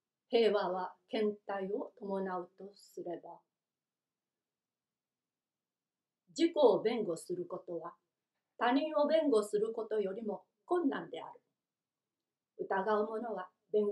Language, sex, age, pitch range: Japanese, female, 40-59, 195-290 Hz